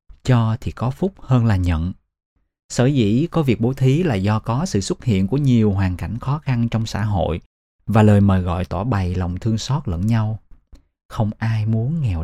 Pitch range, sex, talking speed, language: 95-125 Hz, male, 210 wpm, Vietnamese